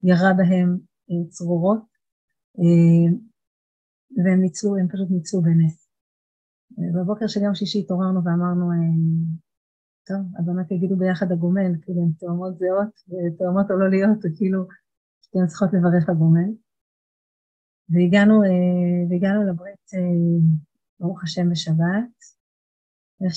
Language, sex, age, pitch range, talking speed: Hebrew, female, 30-49, 170-200 Hz, 100 wpm